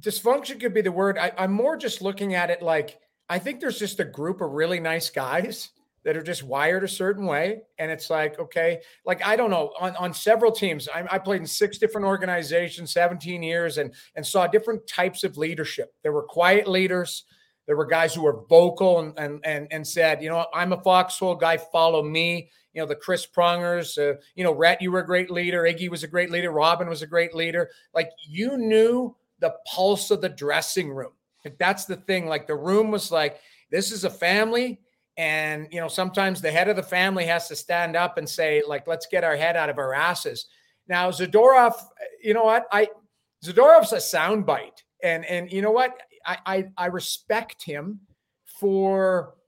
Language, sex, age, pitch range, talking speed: English, male, 40-59, 165-210 Hz, 205 wpm